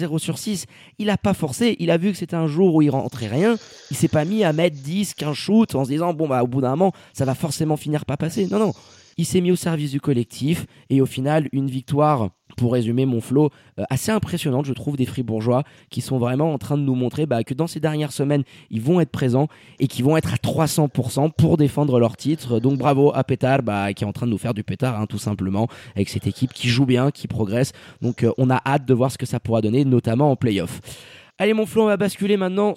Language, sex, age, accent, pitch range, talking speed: French, male, 20-39, French, 130-165 Hz, 260 wpm